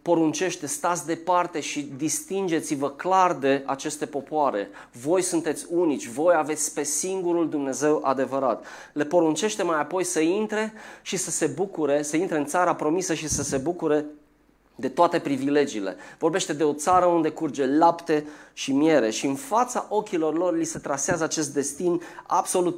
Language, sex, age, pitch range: Romanian, male, 30-49, 140-175 Hz